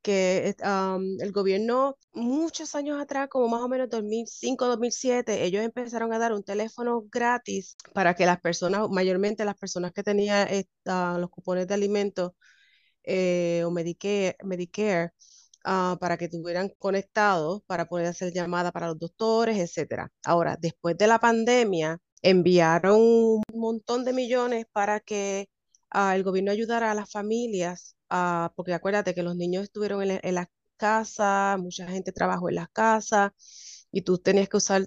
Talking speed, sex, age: 155 wpm, female, 30-49